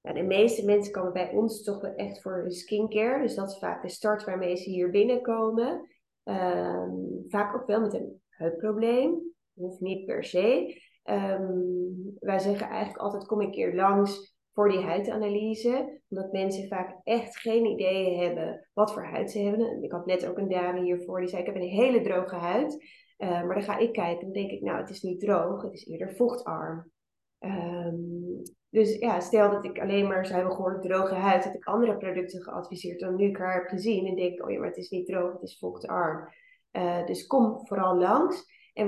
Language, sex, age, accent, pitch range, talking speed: Dutch, female, 20-39, Dutch, 180-215 Hz, 205 wpm